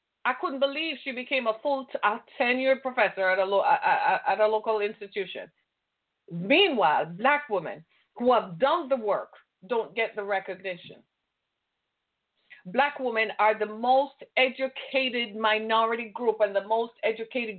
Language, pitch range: English, 210-265 Hz